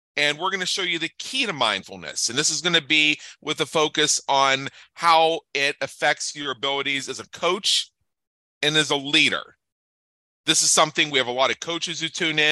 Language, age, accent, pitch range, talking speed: English, 40-59, American, 130-165 Hz, 205 wpm